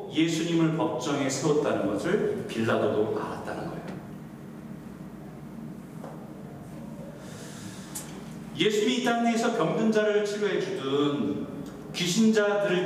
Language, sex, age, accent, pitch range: Korean, male, 40-59, native, 155-230 Hz